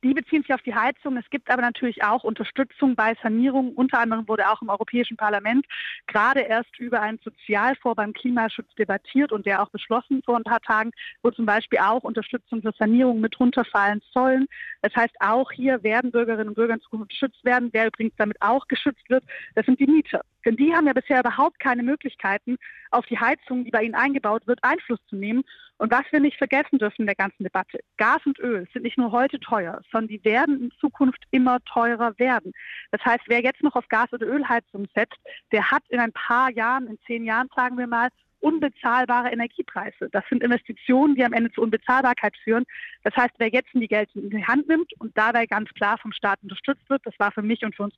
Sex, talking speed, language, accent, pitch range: female, 215 wpm, German, German, 220-260 Hz